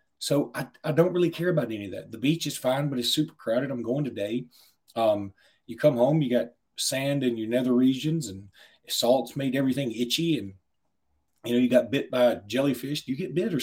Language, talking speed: English, 220 wpm